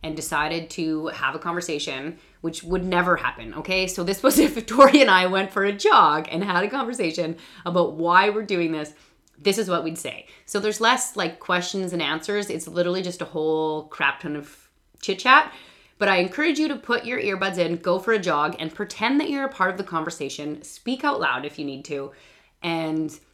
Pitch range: 155-205 Hz